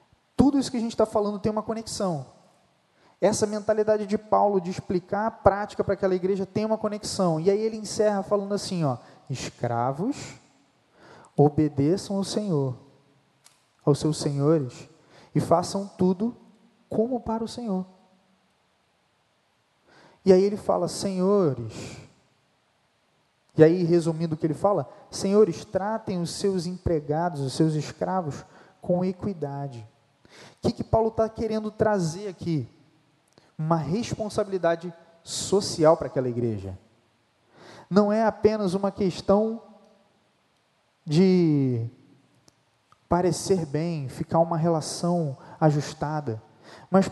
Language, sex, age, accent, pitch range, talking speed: Portuguese, male, 20-39, Brazilian, 155-205 Hz, 120 wpm